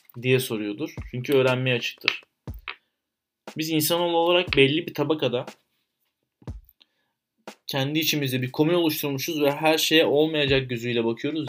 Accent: native